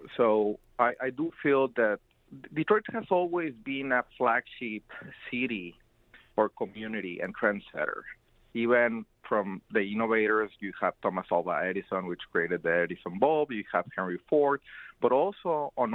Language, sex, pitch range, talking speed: English, male, 95-120 Hz, 145 wpm